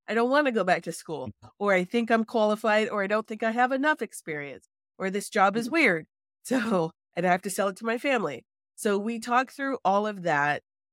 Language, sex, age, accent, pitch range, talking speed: English, female, 30-49, American, 160-200 Hz, 230 wpm